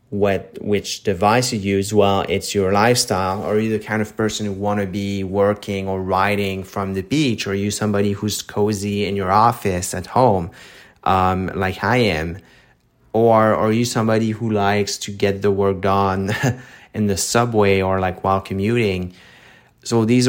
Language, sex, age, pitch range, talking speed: English, male, 30-49, 100-115 Hz, 175 wpm